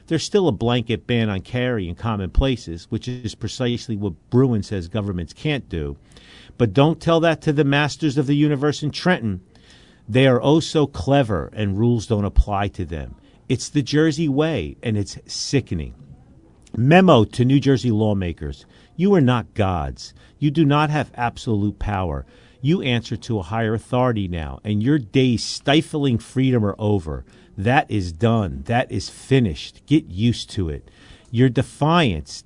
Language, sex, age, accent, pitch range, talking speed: English, male, 50-69, American, 100-135 Hz, 165 wpm